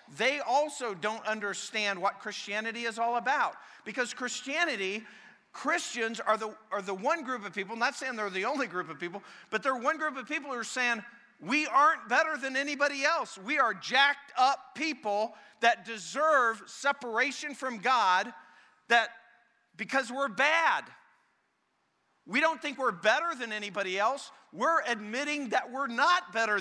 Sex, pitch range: male, 185-260 Hz